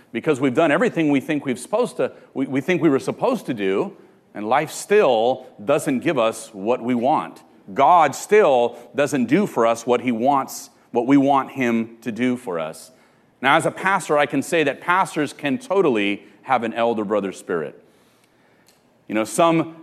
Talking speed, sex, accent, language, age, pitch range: 190 wpm, male, American, English, 40-59, 135-180 Hz